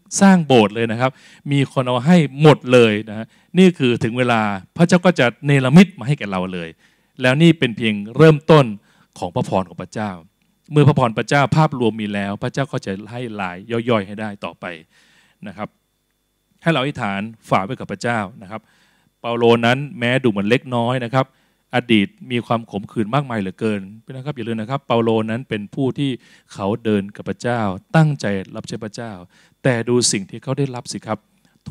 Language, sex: Thai, male